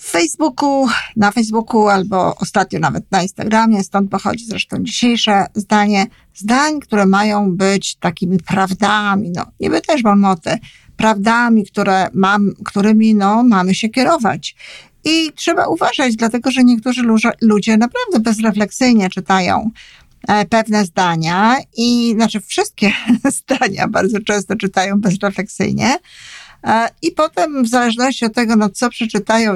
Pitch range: 200-240 Hz